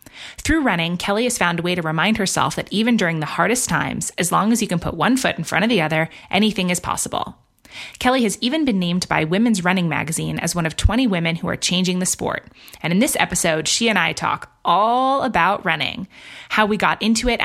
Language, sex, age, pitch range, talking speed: English, female, 20-39, 175-220 Hz, 230 wpm